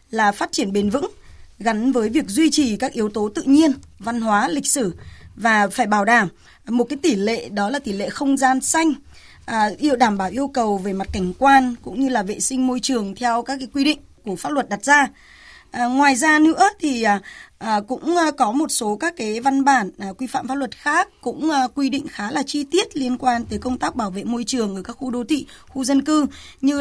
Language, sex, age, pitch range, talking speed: Vietnamese, female, 20-39, 220-275 Hz, 240 wpm